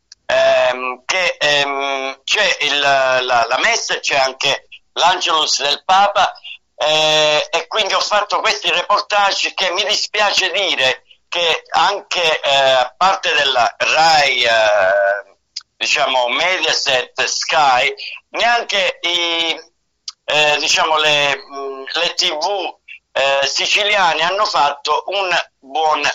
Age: 60-79